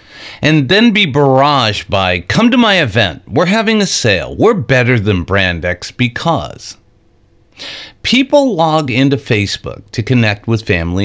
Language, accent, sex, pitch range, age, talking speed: English, American, male, 105-150 Hz, 50-69, 145 wpm